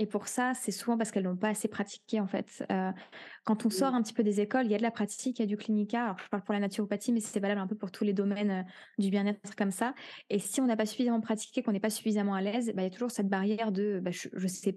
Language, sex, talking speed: French, female, 315 wpm